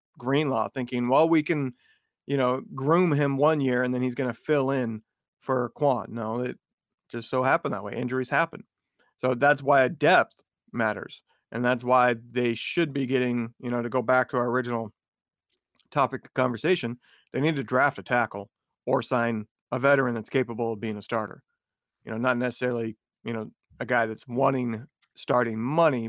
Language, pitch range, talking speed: English, 120-145 Hz, 185 wpm